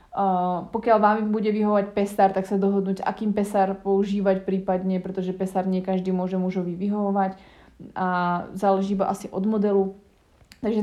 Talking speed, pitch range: 150 wpm, 190-220 Hz